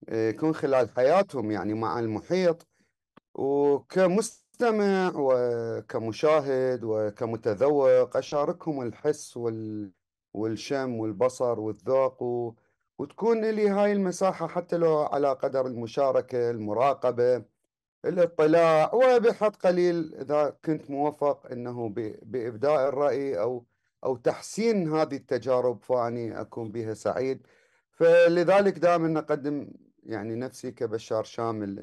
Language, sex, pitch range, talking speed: English, male, 120-155 Hz, 90 wpm